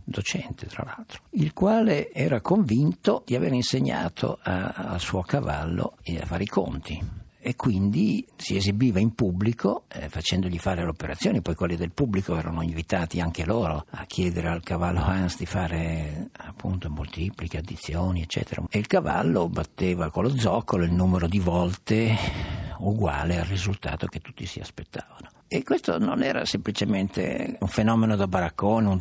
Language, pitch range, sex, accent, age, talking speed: Italian, 85-105 Hz, male, native, 60-79, 155 wpm